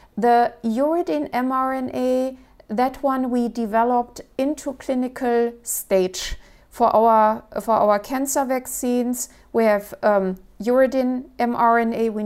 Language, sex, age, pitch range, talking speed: English, female, 50-69, 210-255 Hz, 110 wpm